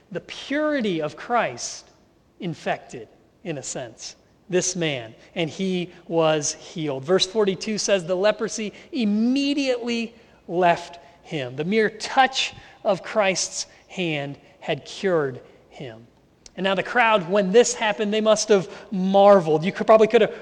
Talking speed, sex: 135 wpm, male